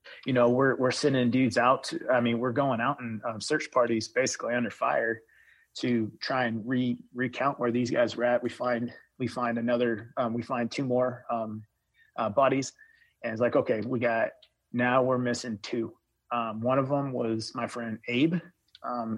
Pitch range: 115-125 Hz